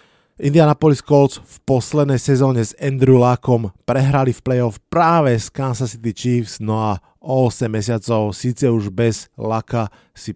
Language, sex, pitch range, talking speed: Slovak, male, 115-140 Hz, 150 wpm